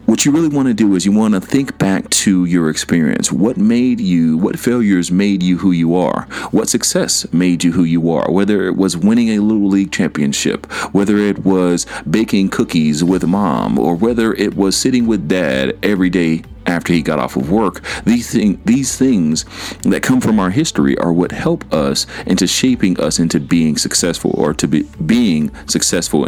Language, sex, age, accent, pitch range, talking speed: English, male, 40-59, American, 85-120 Hz, 195 wpm